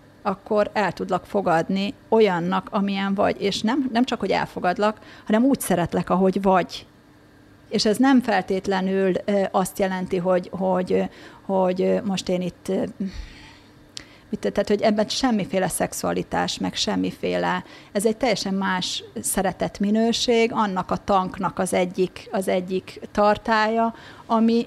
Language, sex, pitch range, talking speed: Hungarian, female, 190-220 Hz, 125 wpm